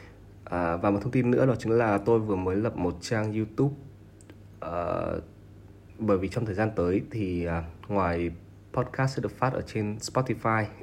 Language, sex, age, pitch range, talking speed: Vietnamese, male, 20-39, 95-115 Hz, 185 wpm